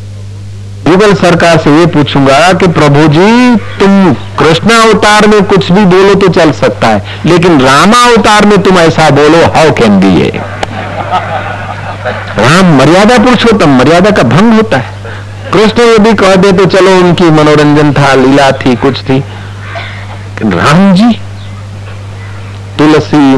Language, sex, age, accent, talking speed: Hindi, male, 50-69, native, 140 wpm